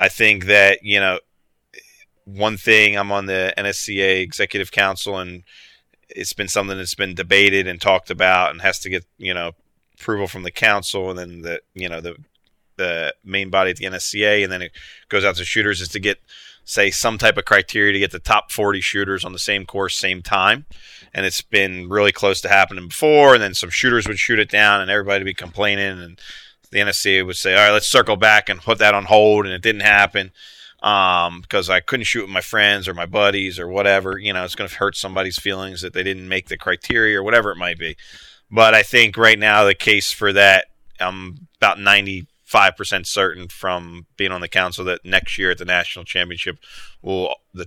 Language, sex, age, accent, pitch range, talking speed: English, male, 30-49, American, 90-105 Hz, 220 wpm